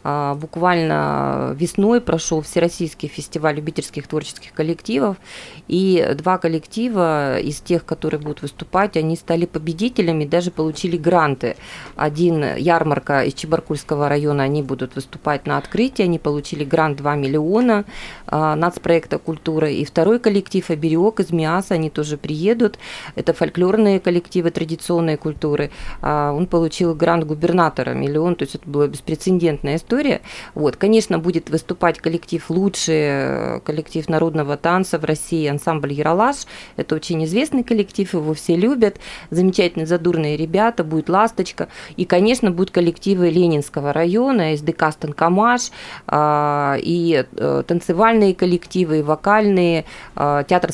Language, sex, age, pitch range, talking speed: Russian, female, 20-39, 155-180 Hz, 120 wpm